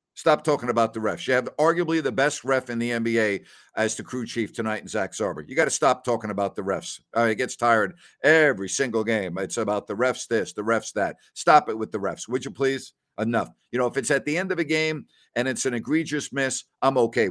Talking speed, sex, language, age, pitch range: 245 wpm, male, English, 50-69, 115-160 Hz